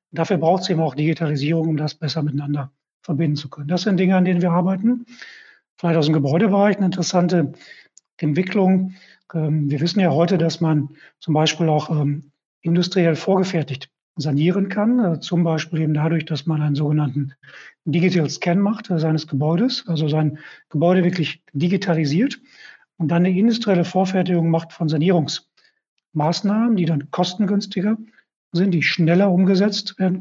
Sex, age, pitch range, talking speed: male, 40-59, 155-185 Hz, 145 wpm